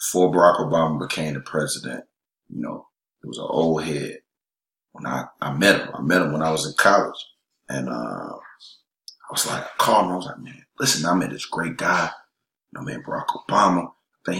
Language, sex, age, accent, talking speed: English, male, 30-49, American, 215 wpm